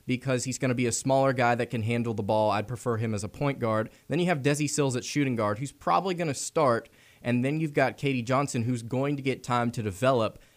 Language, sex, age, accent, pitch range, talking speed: English, male, 20-39, American, 115-135 Hz, 260 wpm